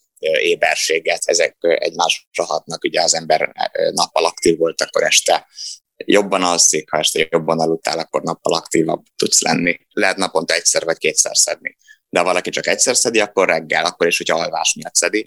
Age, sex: 20-39, male